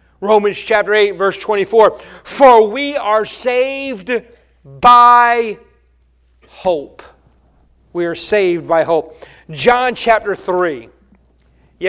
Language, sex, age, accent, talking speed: English, male, 40-59, American, 100 wpm